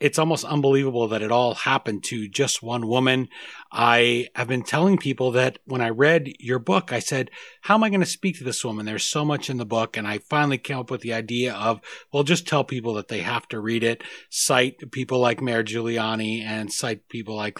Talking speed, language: 230 wpm, English